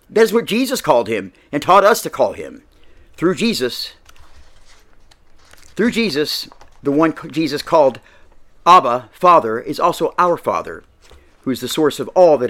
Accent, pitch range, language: American, 135-185 Hz, English